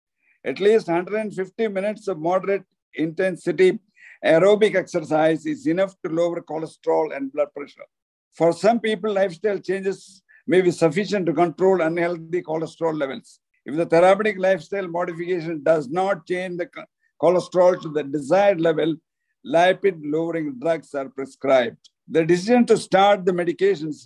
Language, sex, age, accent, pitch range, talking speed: English, male, 50-69, Indian, 160-195 Hz, 135 wpm